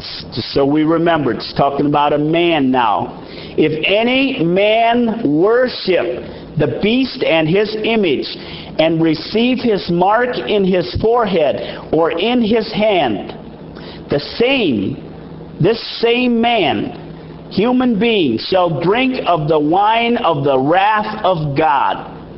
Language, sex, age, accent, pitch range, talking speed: English, male, 50-69, American, 170-235 Hz, 125 wpm